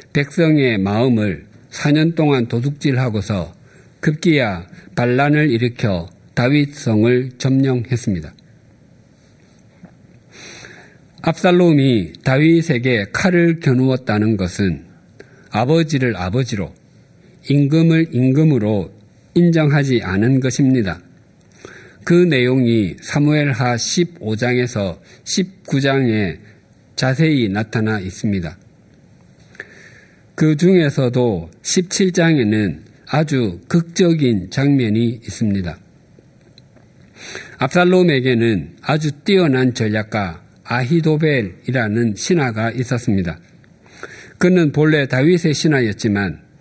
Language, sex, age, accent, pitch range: Korean, male, 50-69, native, 110-155 Hz